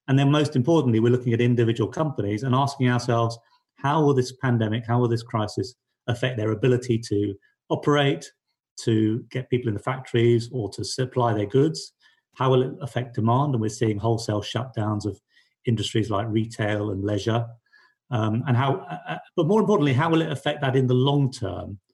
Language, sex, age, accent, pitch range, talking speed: English, male, 40-59, British, 110-130 Hz, 185 wpm